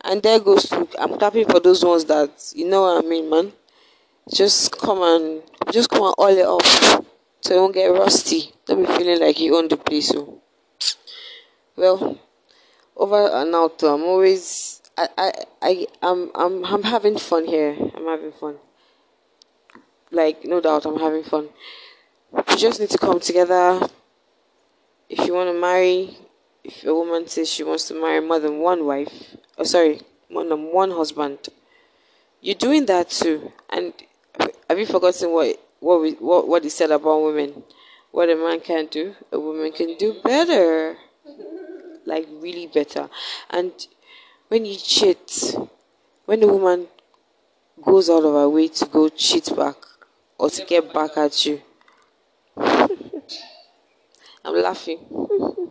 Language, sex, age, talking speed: English, female, 20-39, 155 wpm